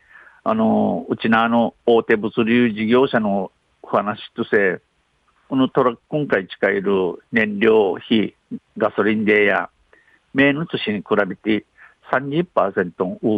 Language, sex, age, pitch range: Japanese, male, 50-69, 105-135 Hz